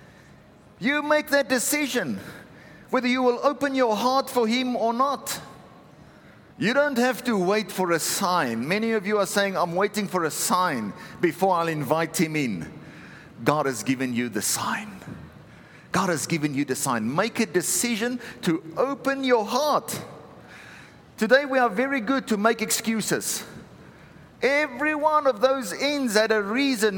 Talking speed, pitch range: 160 wpm, 160-250 Hz